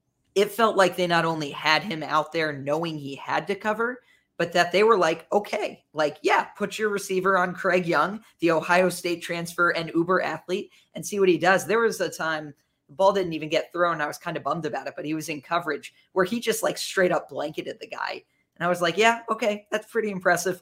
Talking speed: 235 wpm